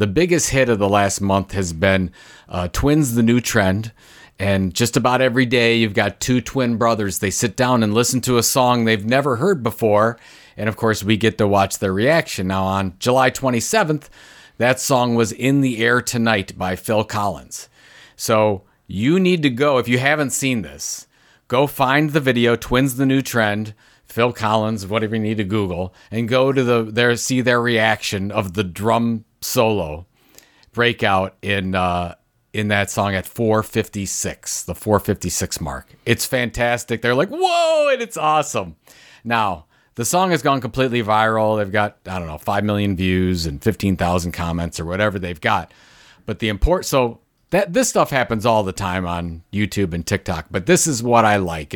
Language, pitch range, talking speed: English, 95-125 Hz, 185 wpm